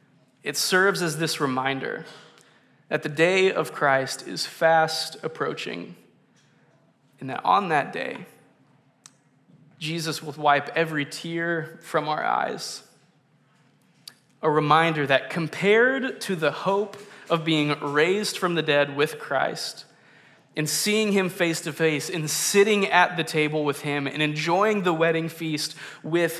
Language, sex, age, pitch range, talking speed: English, male, 20-39, 150-180 Hz, 135 wpm